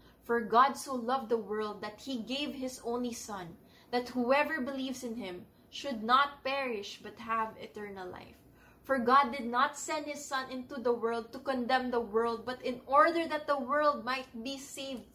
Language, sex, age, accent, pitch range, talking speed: English, female, 20-39, Filipino, 245-315 Hz, 185 wpm